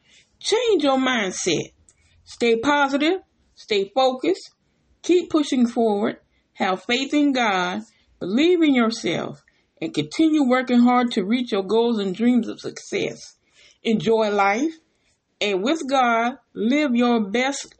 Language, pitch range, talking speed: English, 210-285 Hz, 125 wpm